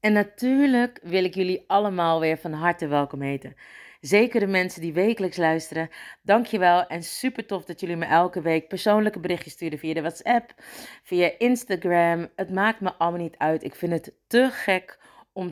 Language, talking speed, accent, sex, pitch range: Dutch, 180 wpm, Dutch, female, 160-205 Hz